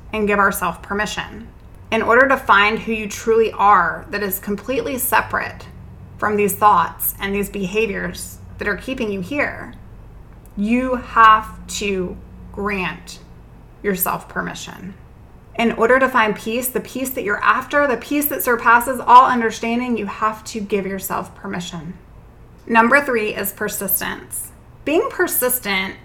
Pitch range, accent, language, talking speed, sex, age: 190-235 Hz, American, English, 140 wpm, female, 20-39